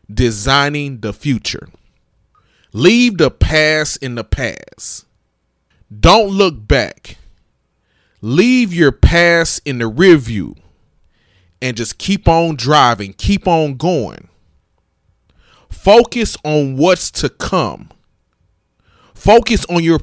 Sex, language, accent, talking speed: male, English, American, 105 wpm